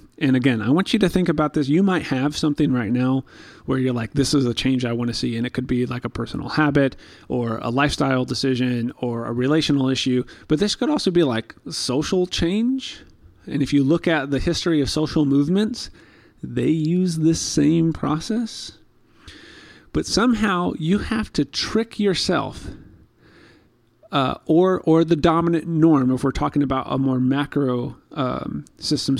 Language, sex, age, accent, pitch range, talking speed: English, male, 30-49, American, 130-160 Hz, 180 wpm